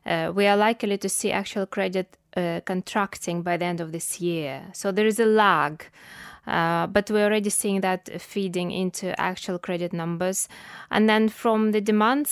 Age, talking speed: 20-39, 180 wpm